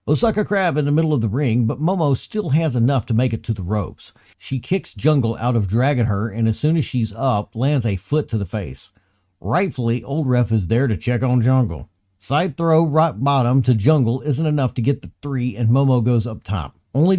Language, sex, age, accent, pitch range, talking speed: English, male, 50-69, American, 110-155 Hz, 225 wpm